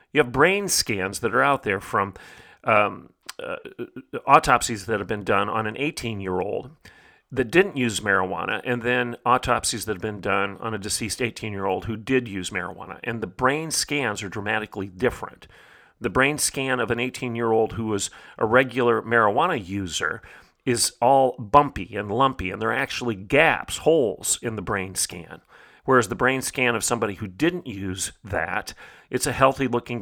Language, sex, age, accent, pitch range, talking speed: English, male, 40-59, American, 105-130 Hz, 170 wpm